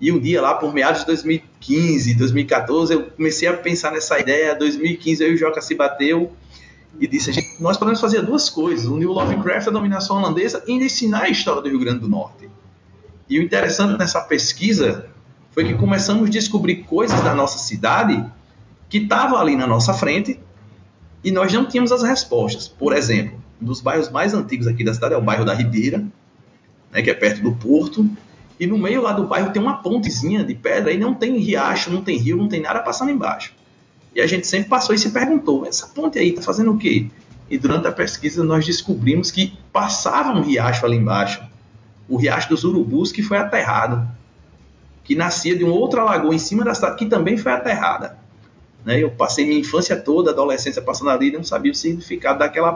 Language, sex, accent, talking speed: Portuguese, male, Brazilian, 205 wpm